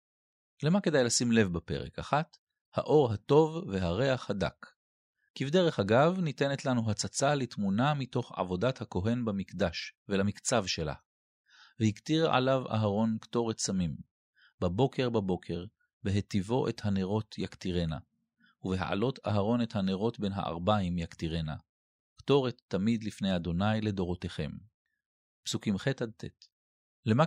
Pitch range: 95-130 Hz